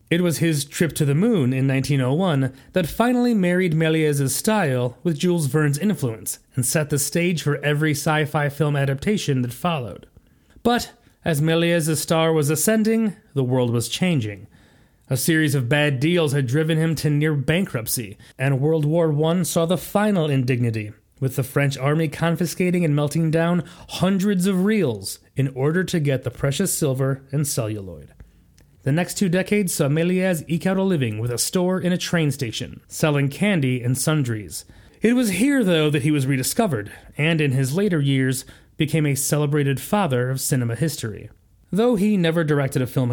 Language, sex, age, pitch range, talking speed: English, male, 30-49, 130-175 Hz, 175 wpm